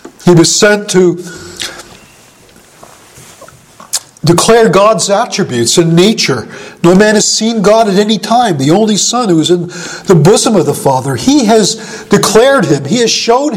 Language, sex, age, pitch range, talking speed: English, male, 50-69, 175-225 Hz, 155 wpm